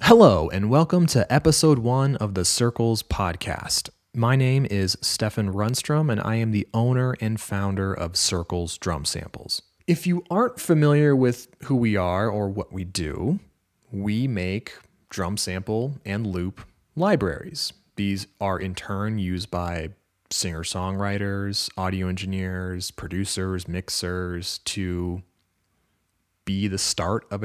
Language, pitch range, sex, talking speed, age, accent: English, 90-115 Hz, male, 135 wpm, 30-49, American